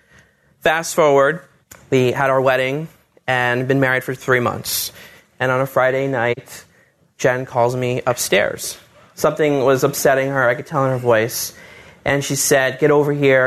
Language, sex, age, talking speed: English, male, 30-49, 165 wpm